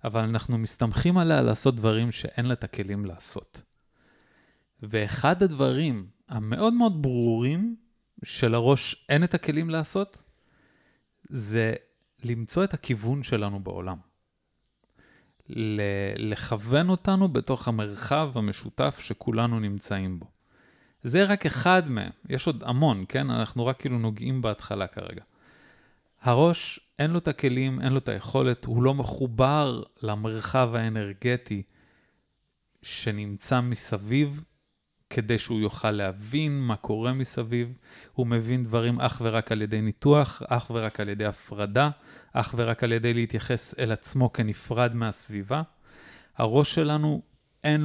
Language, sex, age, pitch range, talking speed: Hebrew, male, 30-49, 110-140 Hz, 125 wpm